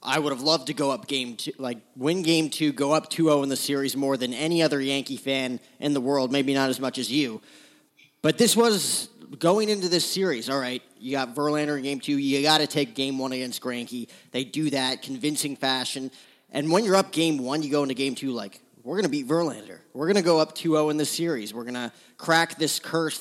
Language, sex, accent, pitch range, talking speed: English, male, American, 130-150 Hz, 250 wpm